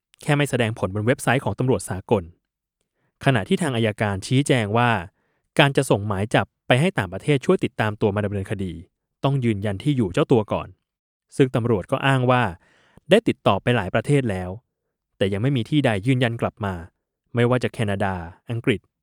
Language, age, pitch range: Thai, 20-39, 100-130 Hz